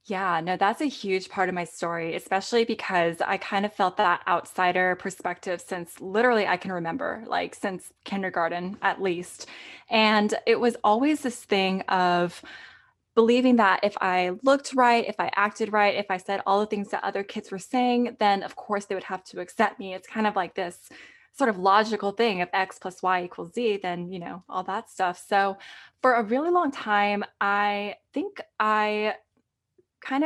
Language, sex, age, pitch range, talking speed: English, female, 20-39, 185-220 Hz, 190 wpm